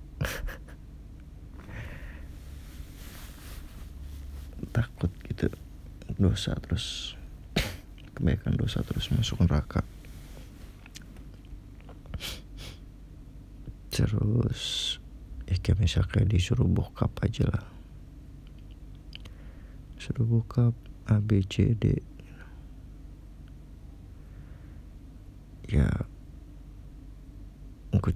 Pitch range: 80-115 Hz